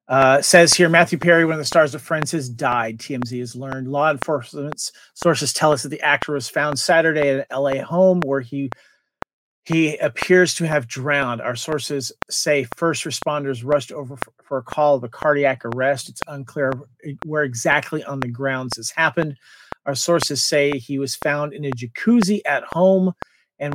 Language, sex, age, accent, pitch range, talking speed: English, male, 40-59, American, 135-160 Hz, 185 wpm